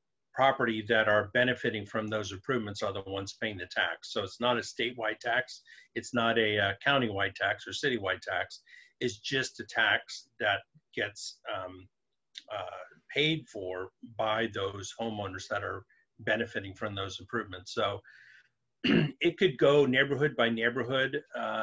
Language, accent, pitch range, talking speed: English, American, 110-130 Hz, 150 wpm